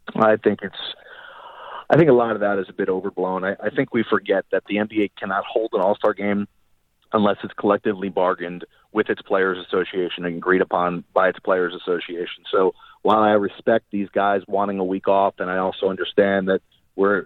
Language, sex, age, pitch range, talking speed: English, male, 40-59, 95-105 Hz, 200 wpm